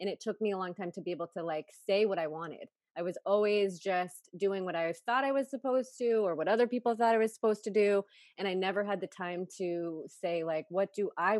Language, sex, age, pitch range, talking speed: English, female, 20-39, 175-210 Hz, 265 wpm